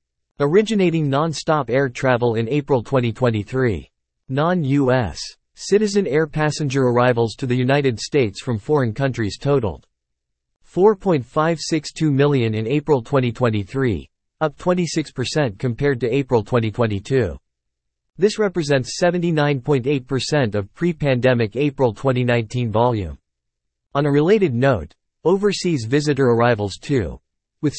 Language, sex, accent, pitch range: English, male, American, 115-150 Hz